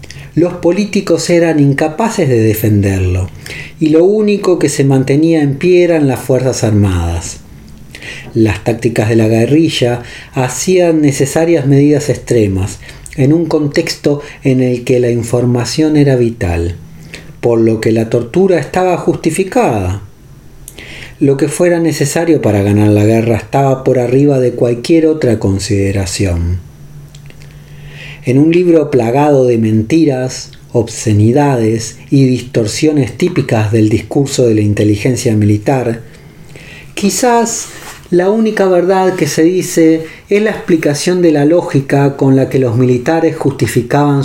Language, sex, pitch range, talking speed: Spanish, male, 115-155 Hz, 125 wpm